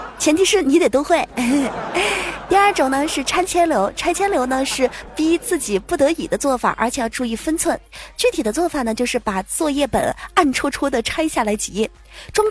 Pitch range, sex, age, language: 235-340 Hz, female, 20-39, Chinese